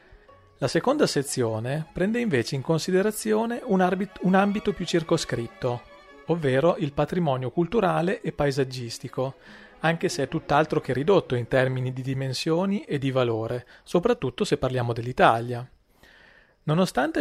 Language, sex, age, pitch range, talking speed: Italian, male, 40-59, 130-185 Hz, 125 wpm